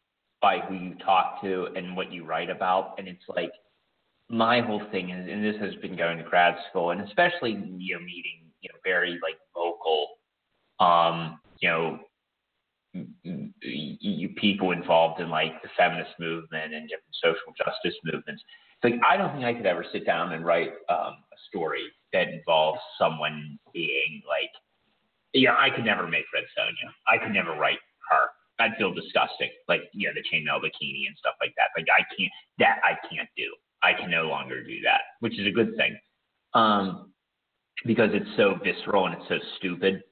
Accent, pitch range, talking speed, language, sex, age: American, 85-110 Hz, 190 wpm, English, male, 30-49